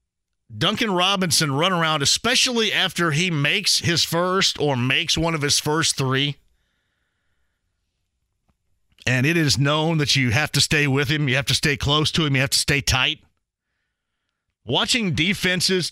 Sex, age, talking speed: male, 50-69, 160 wpm